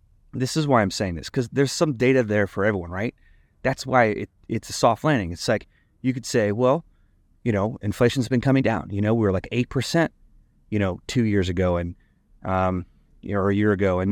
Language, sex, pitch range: English, male, 100-135 Hz